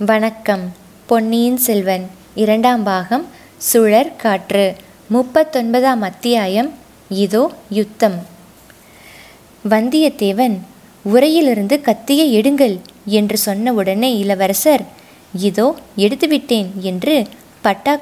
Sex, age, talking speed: female, 20-39, 75 wpm